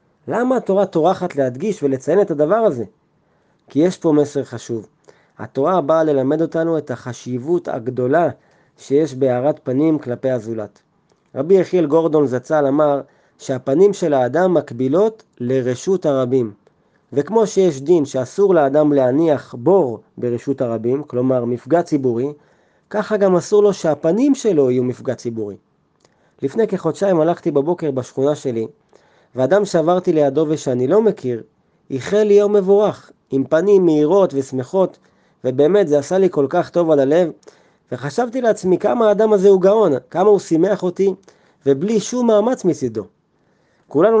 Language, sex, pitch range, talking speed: Hebrew, male, 135-190 Hz, 140 wpm